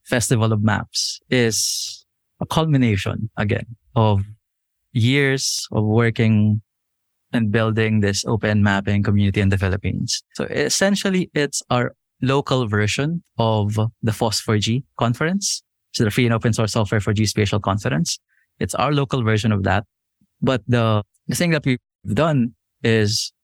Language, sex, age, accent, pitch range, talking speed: English, male, 20-39, Filipino, 105-120 Hz, 140 wpm